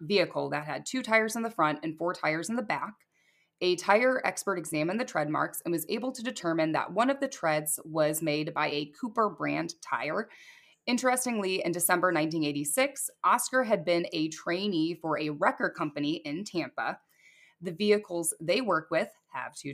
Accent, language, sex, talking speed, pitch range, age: American, English, female, 180 wpm, 155-205 Hz, 20-39